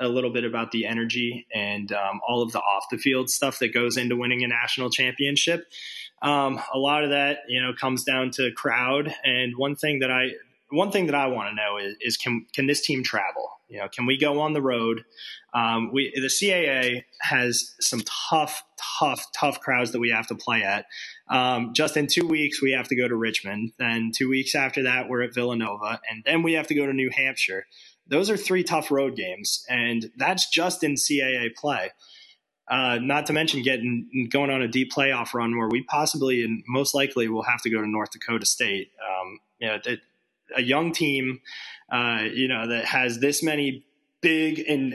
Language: English